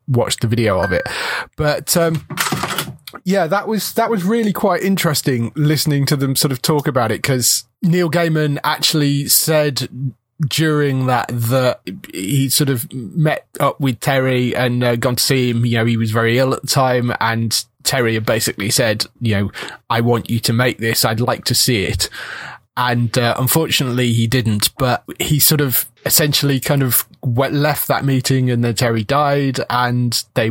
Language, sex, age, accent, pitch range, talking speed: English, male, 20-39, British, 120-140 Hz, 180 wpm